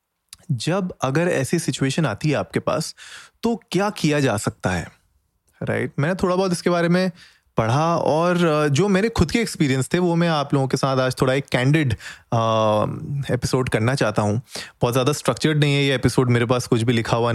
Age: 20-39